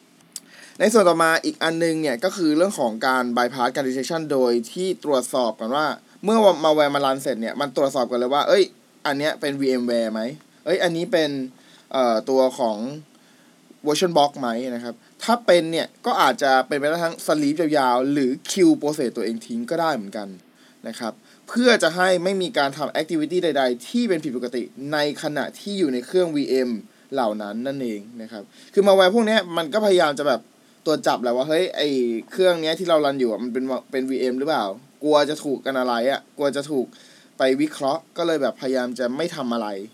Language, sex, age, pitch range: Thai, male, 20-39, 130-185 Hz